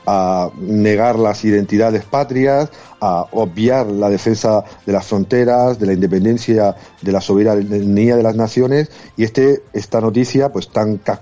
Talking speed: 145 wpm